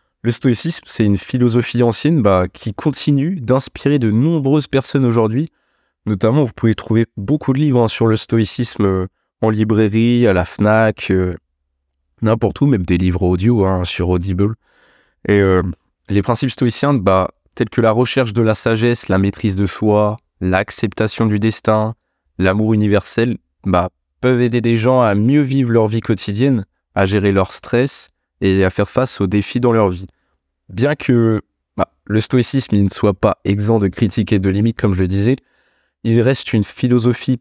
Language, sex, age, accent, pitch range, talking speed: French, male, 20-39, French, 95-120 Hz, 175 wpm